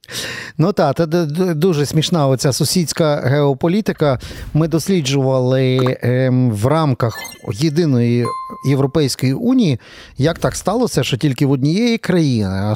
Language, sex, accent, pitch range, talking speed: Ukrainian, male, native, 130-180 Hz, 110 wpm